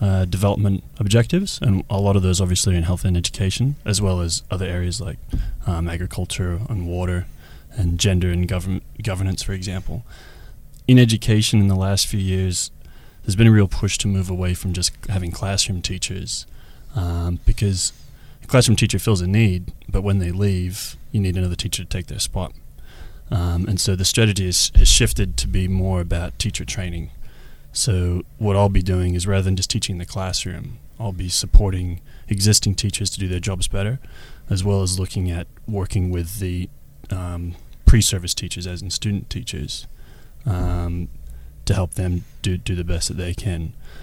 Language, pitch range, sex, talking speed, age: English, 90-105 Hz, male, 180 wpm, 20-39